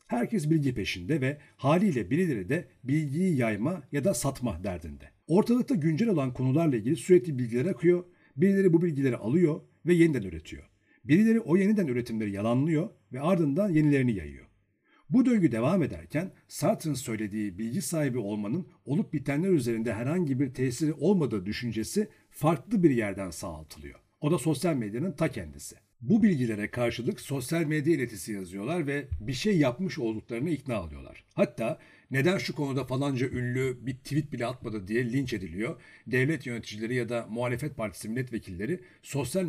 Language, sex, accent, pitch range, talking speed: Turkish, male, native, 115-175 Hz, 150 wpm